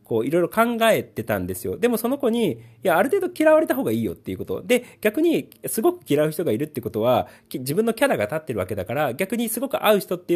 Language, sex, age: Japanese, male, 40-59